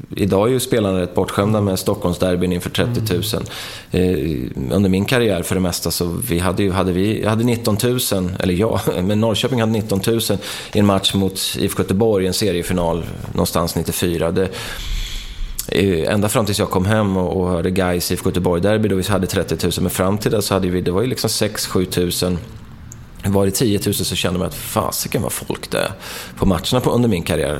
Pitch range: 95-110 Hz